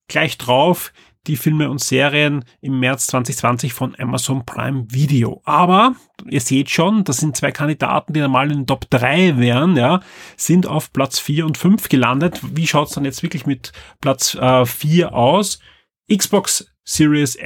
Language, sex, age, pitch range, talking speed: German, male, 30-49, 140-180 Hz, 160 wpm